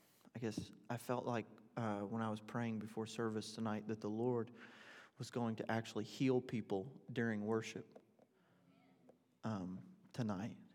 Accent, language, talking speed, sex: American, English, 145 wpm, male